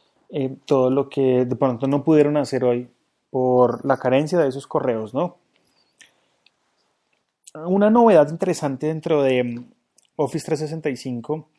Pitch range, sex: 125-155 Hz, male